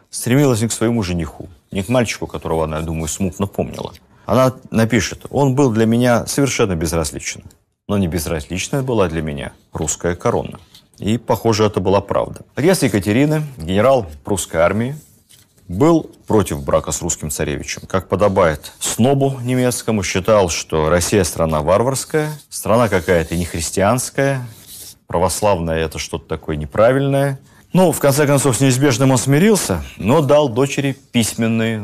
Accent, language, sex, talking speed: native, Russian, male, 145 wpm